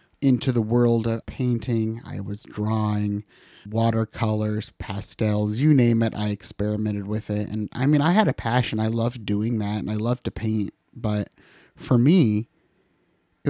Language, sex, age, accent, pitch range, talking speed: English, male, 30-49, American, 105-130 Hz, 165 wpm